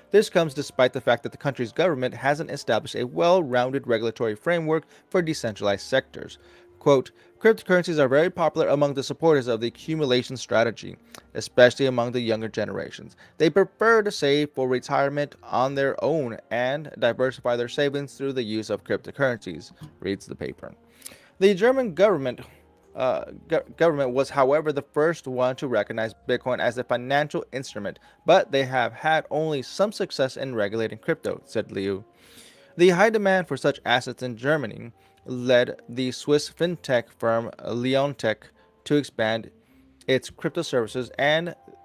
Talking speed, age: 150 wpm, 20-39